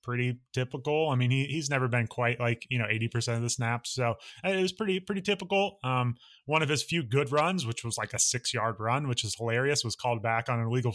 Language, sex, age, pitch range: English, male, 20-39, 115-135 Hz